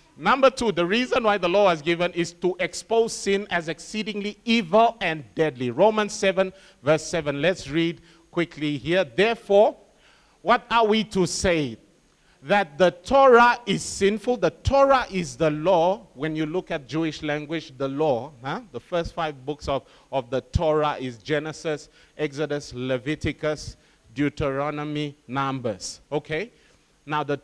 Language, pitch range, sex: English, 155-235 Hz, male